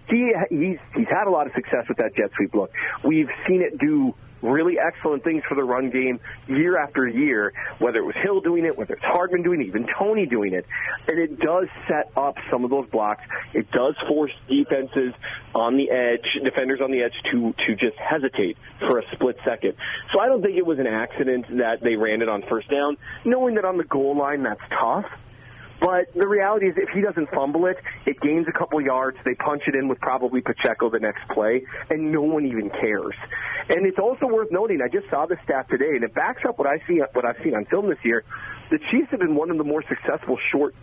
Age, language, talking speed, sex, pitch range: 30-49, English, 230 wpm, male, 125-190 Hz